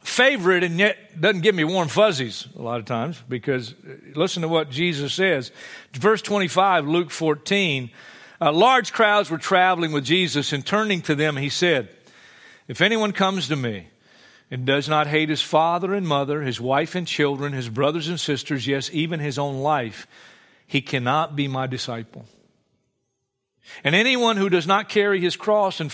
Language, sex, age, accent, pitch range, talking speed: English, male, 50-69, American, 145-205 Hz, 175 wpm